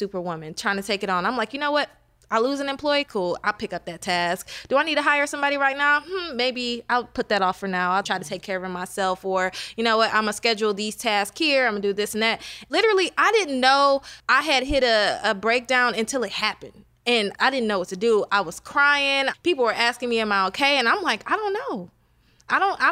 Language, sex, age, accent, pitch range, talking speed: English, female, 20-39, American, 200-245 Hz, 260 wpm